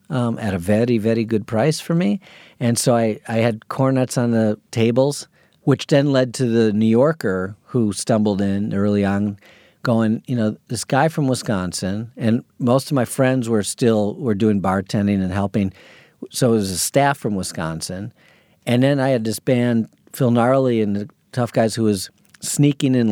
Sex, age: male, 50-69